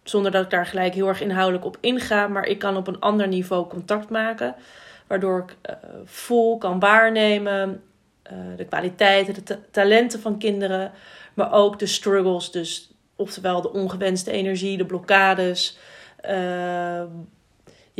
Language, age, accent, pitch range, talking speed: Dutch, 30-49, Dutch, 180-205 Hz, 145 wpm